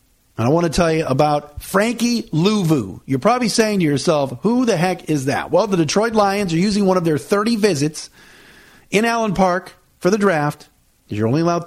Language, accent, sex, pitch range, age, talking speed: English, American, male, 145-195 Hz, 50-69, 205 wpm